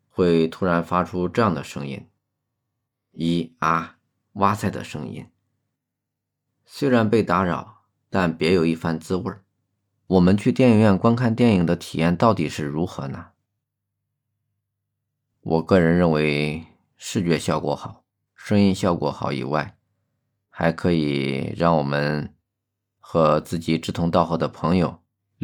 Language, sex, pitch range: Chinese, male, 85-105 Hz